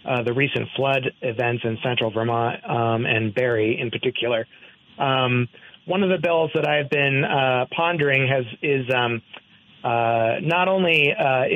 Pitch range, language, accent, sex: 125-155 Hz, English, American, male